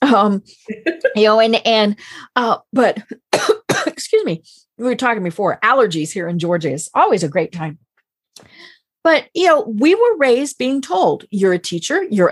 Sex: female